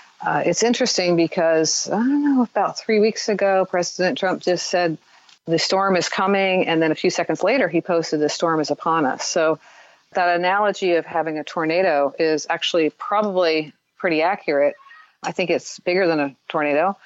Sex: female